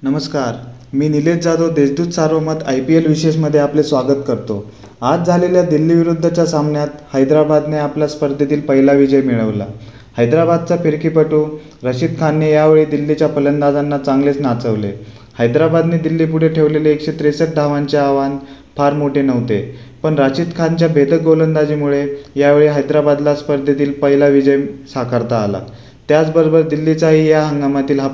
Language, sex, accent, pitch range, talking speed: Marathi, male, native, 135-155 Hz, 125 wpm